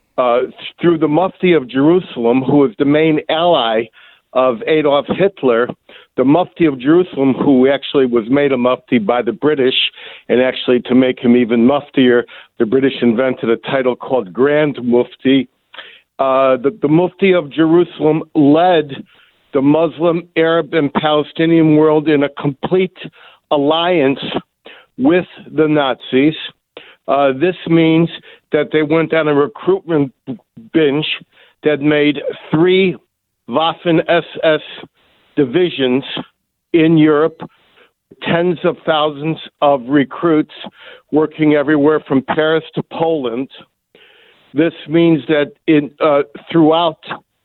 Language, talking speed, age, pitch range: English, 125 wpm, 60-79, 135-165 Hz